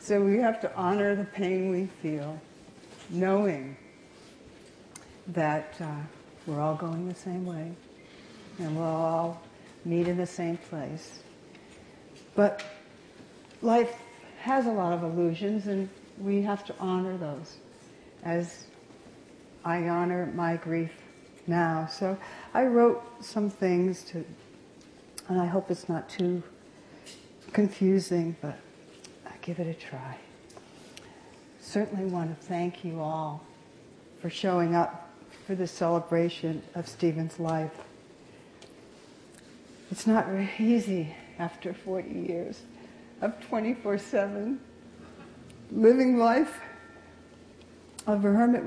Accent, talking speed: American, 110 wpm